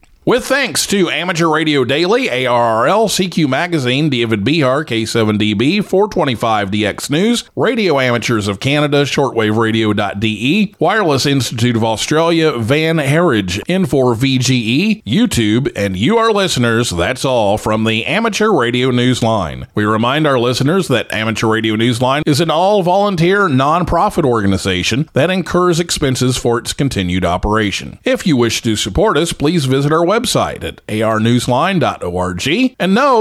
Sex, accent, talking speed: male, American, 130 wpm